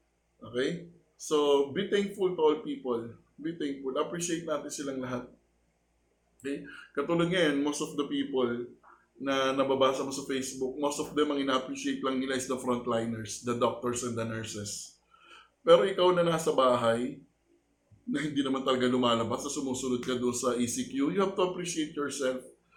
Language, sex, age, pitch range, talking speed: Filipino, male, 20-39, 130-165 Hz, 160 wpm